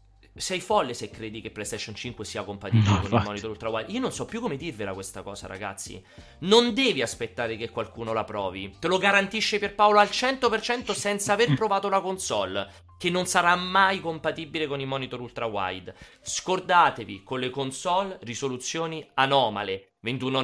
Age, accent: 30-49, native